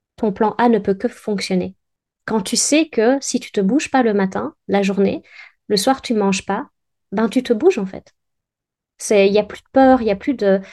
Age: 20-39